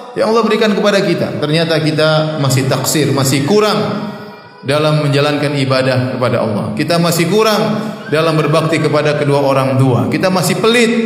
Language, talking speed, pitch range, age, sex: Indonesian, 150 wpm, 140-220 Hz, 30-49, male